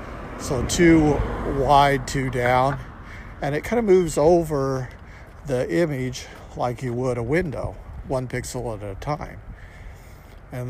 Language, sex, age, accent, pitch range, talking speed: English, male, 50-69, American, 105-140 Hz, 135 wpm